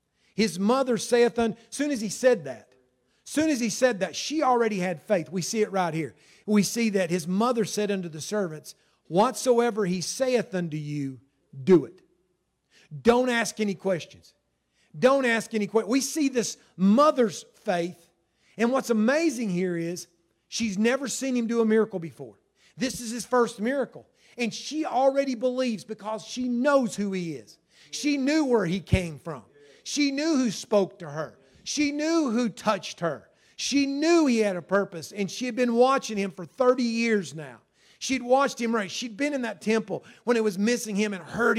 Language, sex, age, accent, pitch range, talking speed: English, male, 40-59, American, 180-245 Hz, 185 wpm